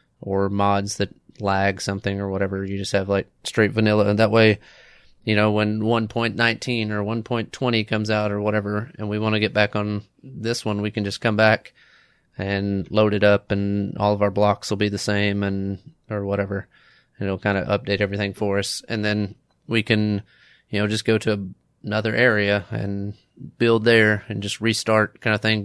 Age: 30-49